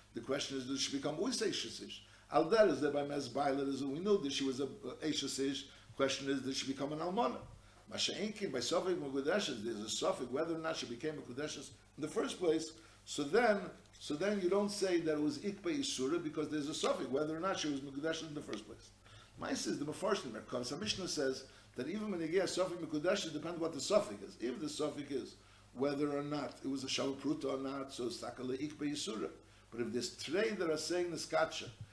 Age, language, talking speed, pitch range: 60-79, English, 220 wpm, 130-165 Hz